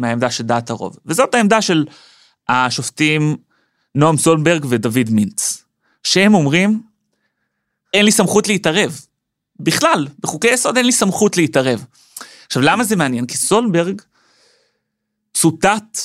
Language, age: Hebrew, 30-49